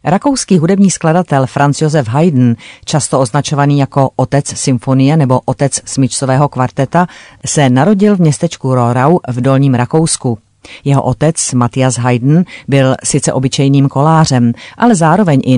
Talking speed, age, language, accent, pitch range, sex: 130 wpm, 40-59, Czech, native, 130-155 Hz, female